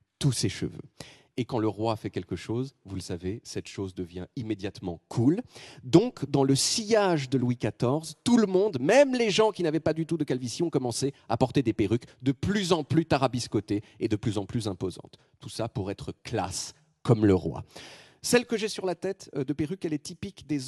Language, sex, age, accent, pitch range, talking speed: French, male, 40-59, French, 120-170 Hz, 220 wpm